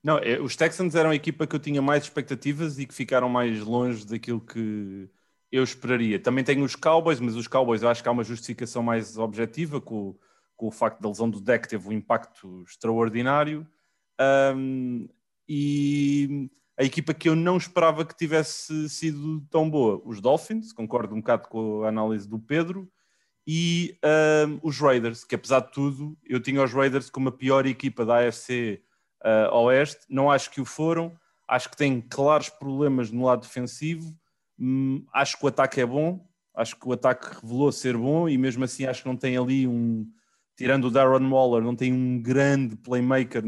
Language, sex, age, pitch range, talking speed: Portuguese, male, 30-49, 120-145 Hz, 190 wpm